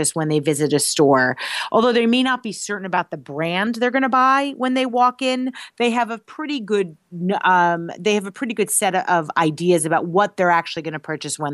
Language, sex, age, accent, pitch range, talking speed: English, female, 30-49, American, 170-210 Hz, 225 wpm